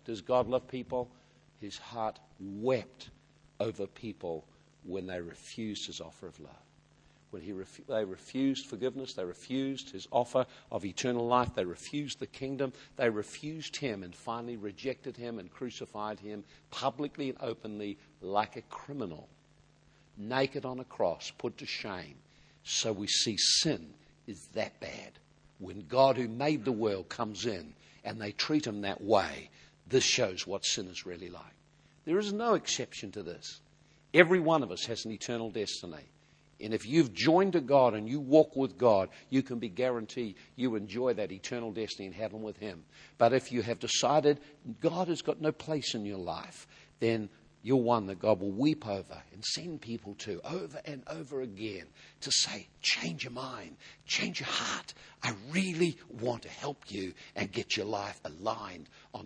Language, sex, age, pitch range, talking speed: English, male, 50-69, 105-135 Hz, 170 wpm